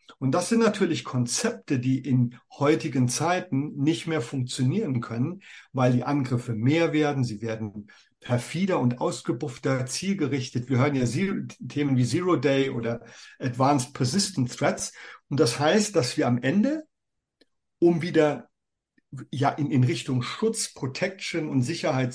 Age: 50-69